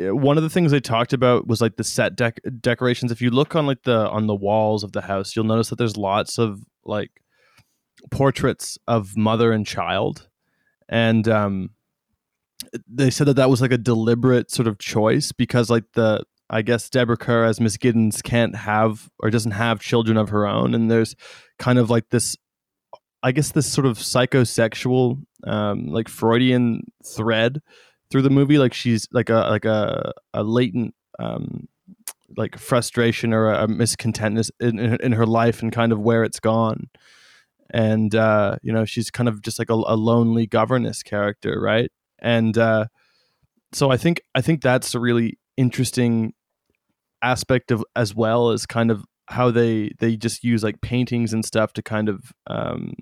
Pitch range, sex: 110-125 Hz, male